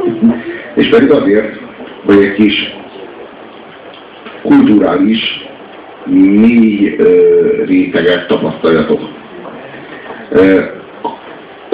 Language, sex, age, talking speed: Hungarian, male, 60-79, 60 wpm